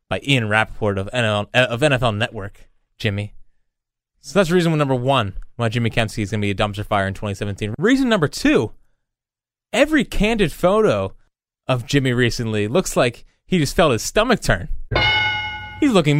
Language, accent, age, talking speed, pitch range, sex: English, American, 20-39, 165 wpm, 120-180 Hz, male